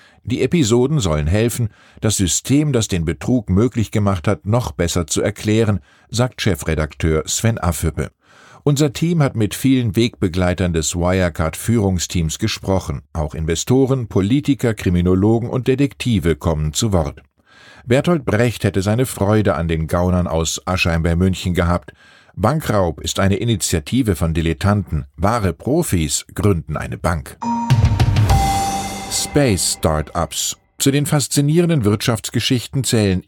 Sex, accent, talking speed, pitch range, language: male, German, 125 wpm, 90-125 Hz, German